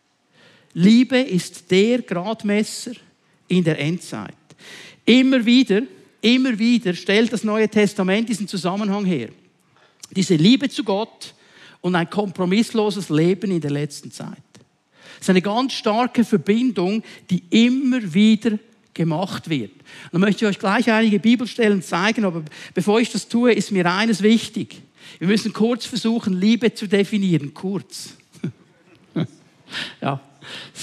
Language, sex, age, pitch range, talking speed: German, male, 60-79, 190-235 Hz, 130 wpm